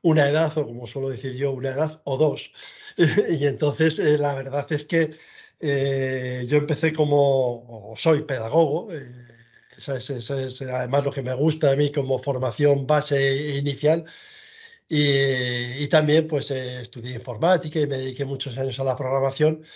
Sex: male